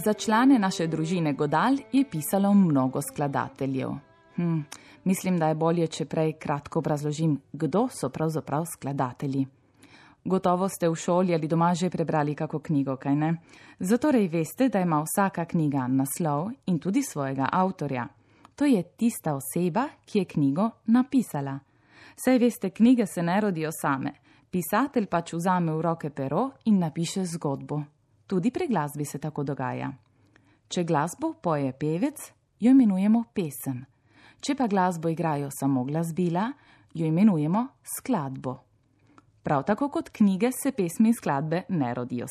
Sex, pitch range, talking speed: female, 140-200 Hz, 140 wpm